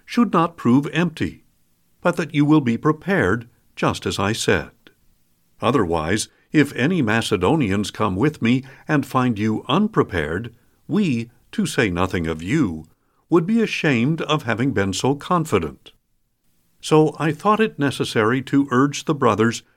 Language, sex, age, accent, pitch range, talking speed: English, male, 50-69, American, 110-155 Hz, 145 wpm